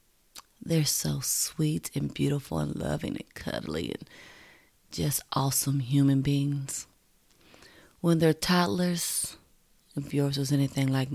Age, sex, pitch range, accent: 30-49, female, 125-145 Hz, American